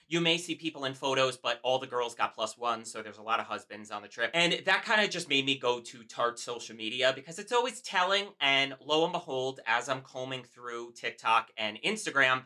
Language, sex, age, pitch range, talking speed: English, male, 30-49, 120-170 Hz, 235 wpm